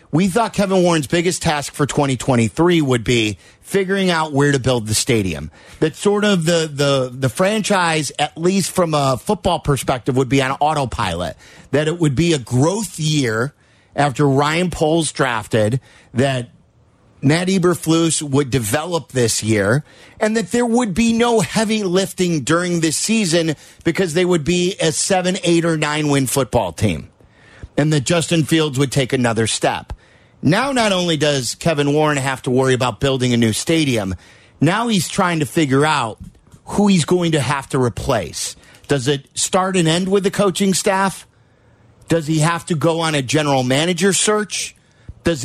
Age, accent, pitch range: 40-59, American, 130-175 Hz